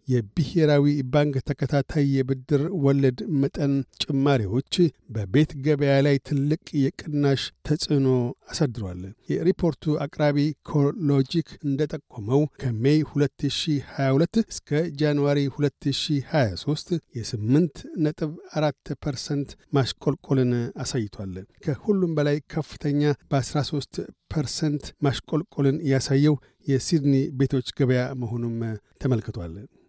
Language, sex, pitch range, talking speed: Amharic, male, 135-150 Hz, 70 wpm